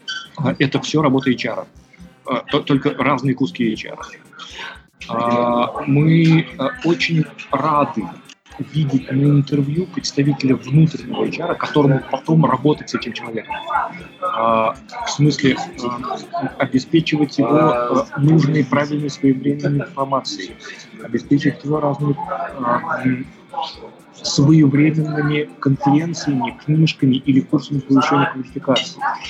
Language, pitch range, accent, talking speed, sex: Russian, 130-150 Hz, native, 85 wpm, male